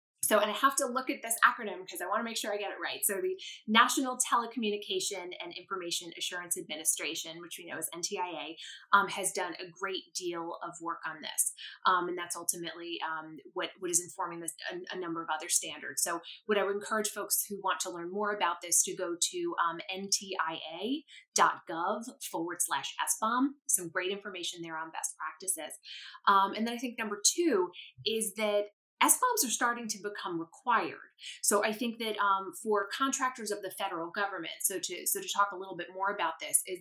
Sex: female